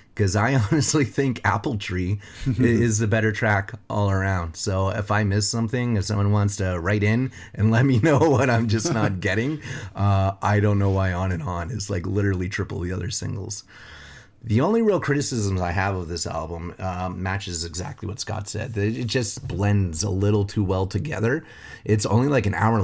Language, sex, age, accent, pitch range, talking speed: English, male, 30-49, American, 95-110 Hz, 195 wpm